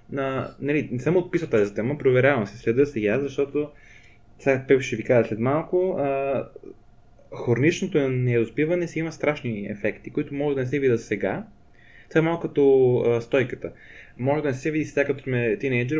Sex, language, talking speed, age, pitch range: male, Bulgarian, 175 wpm, 20-39, 115-150 Hz